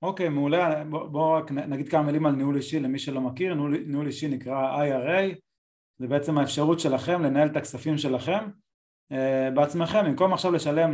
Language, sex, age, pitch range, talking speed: Hebrew, male, 30-49, 135-170 Hz, 175 wpm